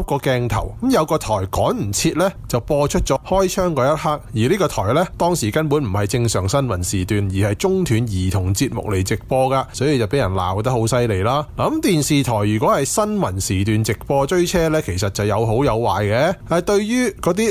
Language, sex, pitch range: Chinese, male, 110-155 Hz